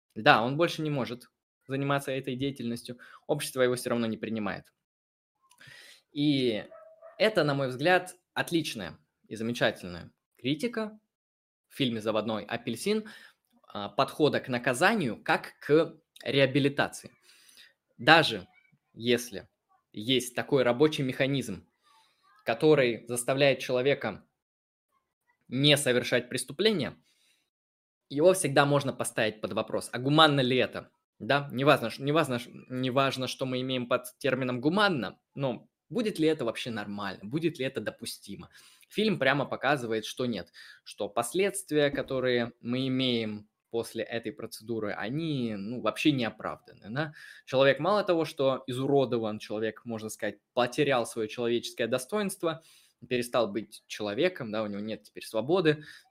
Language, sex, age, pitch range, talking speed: Russian, male, 20-39, 115-150 Hz, 125 wpm